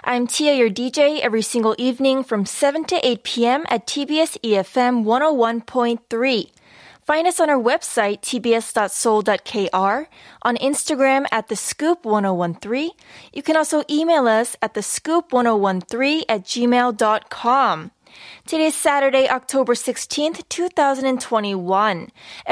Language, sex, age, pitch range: Korean, female, 20-39, 220-295 Hz